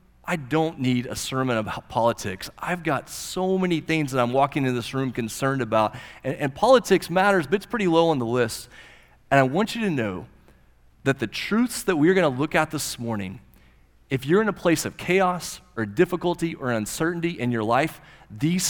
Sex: male